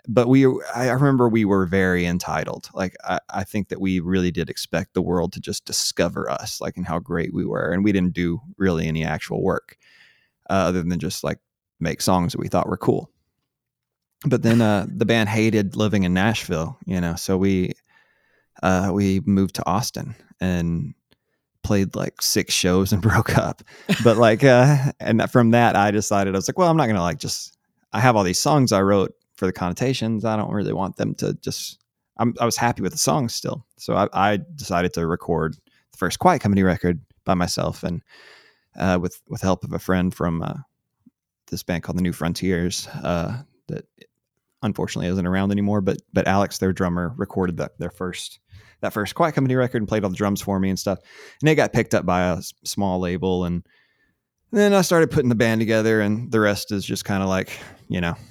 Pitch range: 90-115 Hz